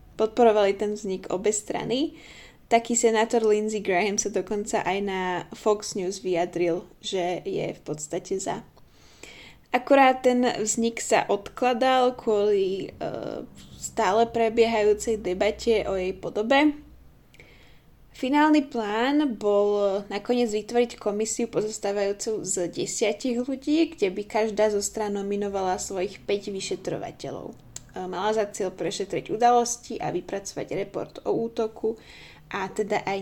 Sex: female